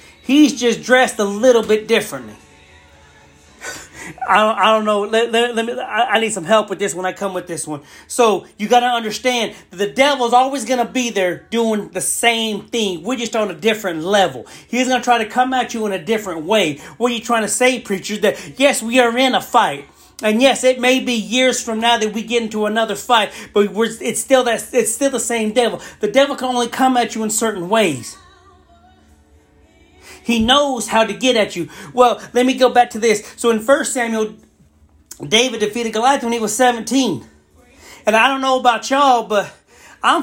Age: 30-49